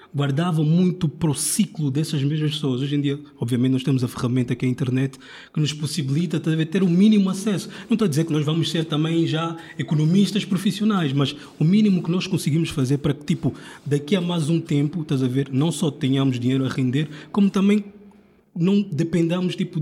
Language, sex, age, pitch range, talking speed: Portuguese, male, 20-39, 145-180 Hz, 210 wpm